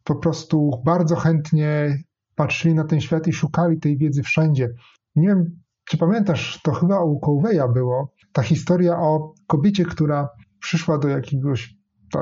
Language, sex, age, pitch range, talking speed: Polish, male, 30-49, 125-170 Hz, 150 wpm